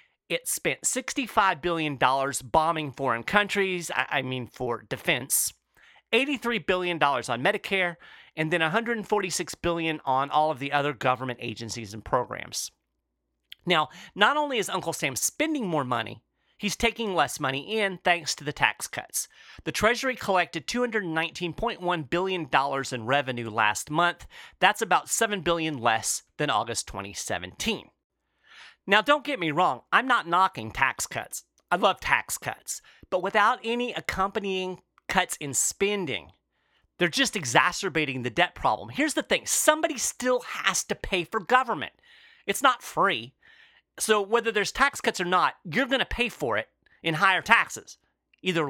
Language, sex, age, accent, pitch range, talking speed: English, male, 30-49, American, 145-230 Hz, 150 wpm